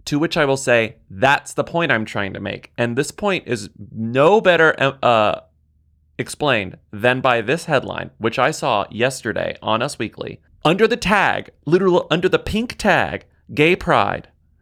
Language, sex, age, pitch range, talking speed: English, male, 30-49, 105-140 Hz, 170 wpm